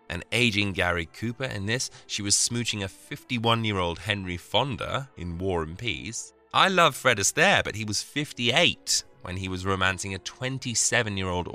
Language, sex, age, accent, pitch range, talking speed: English, male, 20-39, British, 85-115 Hz, 160 wpm